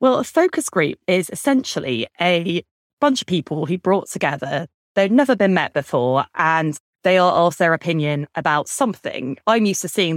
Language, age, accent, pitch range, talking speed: English, 20-39, British, 150-185 Hz, 175 wpm